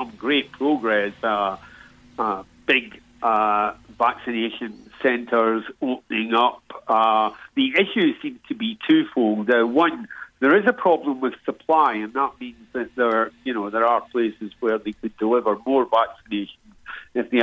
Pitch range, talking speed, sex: 110-135 Hz, 150 wpm, male